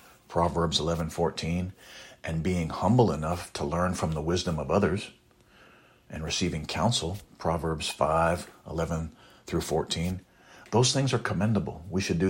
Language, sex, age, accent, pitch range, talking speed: English, male, 50-69, American, 85-100 Hz, 130 wpm